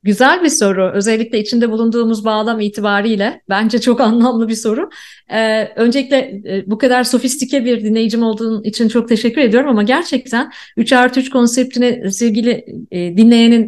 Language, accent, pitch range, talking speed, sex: Turkish, native, 205-235 Hz, 150 wpm, female